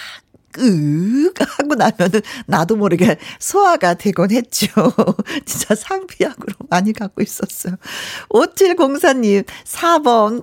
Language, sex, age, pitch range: Korean, female, 50-69, 190-285 Hz